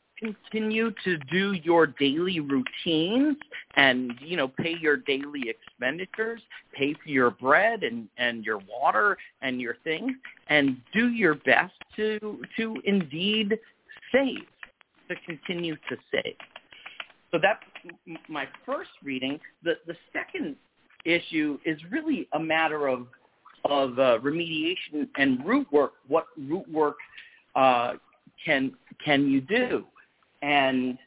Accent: American